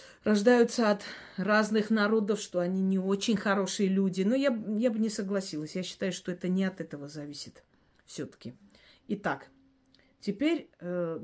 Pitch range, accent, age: 180-225 Hz, native, 40-59